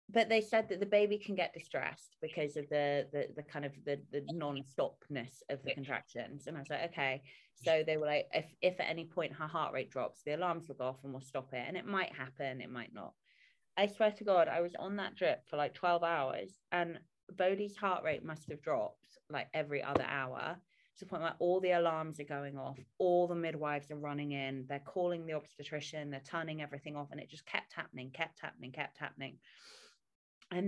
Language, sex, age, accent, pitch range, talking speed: English, female, 20-39, British, 145-185 Hz, 225 wpm